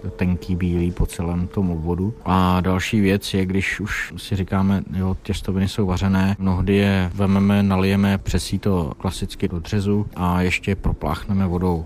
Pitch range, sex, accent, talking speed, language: 95-105 Hz, male, native, 160 wpm, Czech